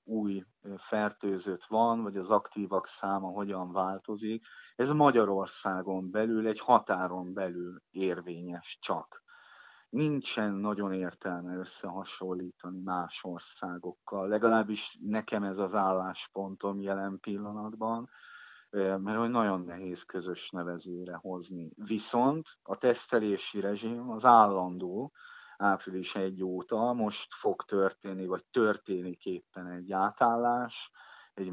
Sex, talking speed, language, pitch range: male, 105 wpm, Hungarian, 95-110 Hz